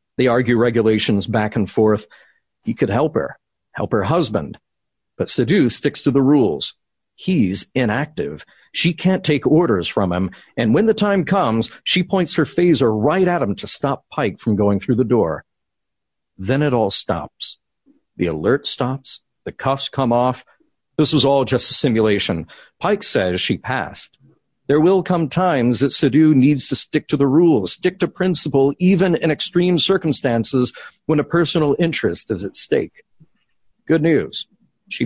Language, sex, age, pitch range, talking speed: English, male, 50-69, 120-170 Hz, 165 wpm